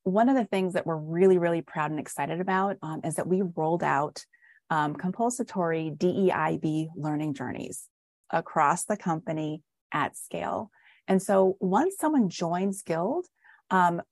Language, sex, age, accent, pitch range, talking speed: English, female, 30-49, American, 165-215 Hz, 150 wpm